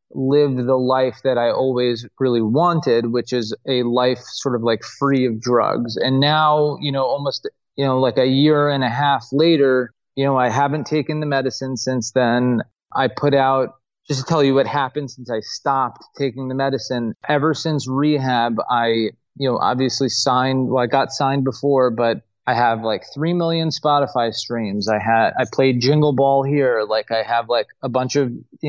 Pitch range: 125-145 Hz